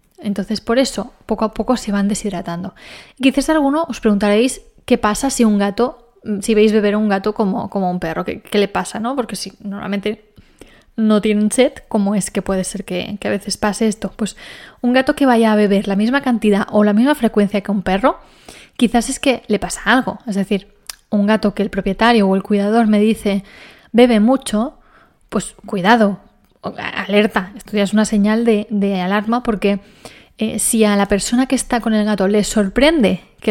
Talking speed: 200 wpm